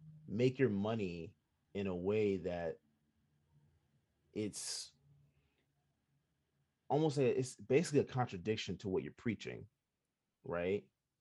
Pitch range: 85-110 Hz